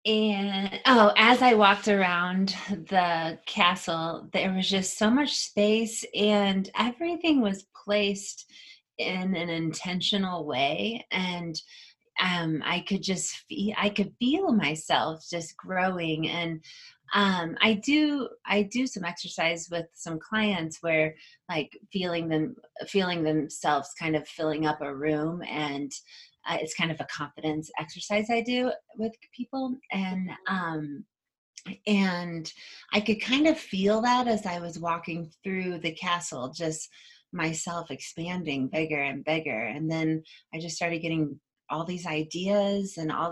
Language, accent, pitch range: English, American, 160-205 Hz